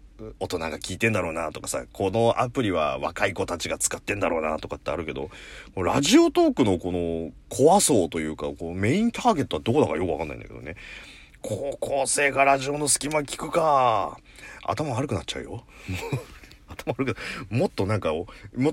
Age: 40-59